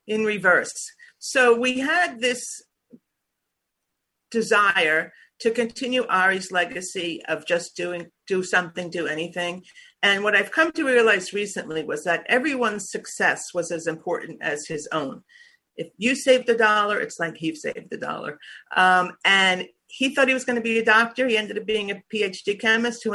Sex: female